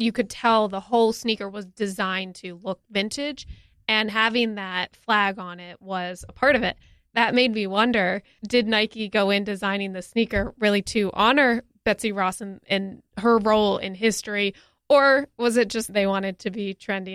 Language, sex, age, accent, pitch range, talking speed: English, female, 20-39, American, 200-245 Hz, 185 wpm